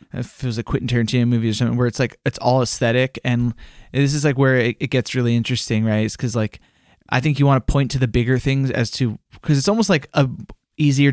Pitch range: 115-140 Hz